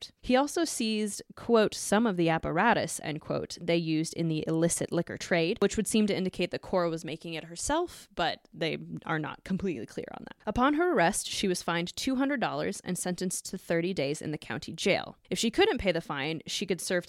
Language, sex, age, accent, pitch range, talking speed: English, female, 20-39, American, 170-220 Hz, 215 wpm